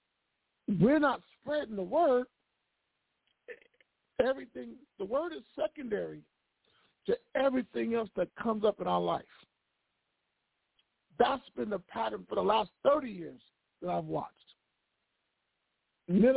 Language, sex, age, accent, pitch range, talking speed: English, male, 50-69, American, 175-230 Hz, 115 wpm